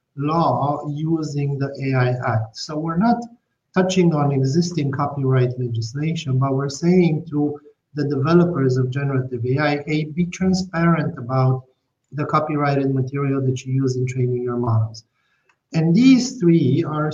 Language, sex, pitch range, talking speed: English, male, 130-165 Hz, 140 wpm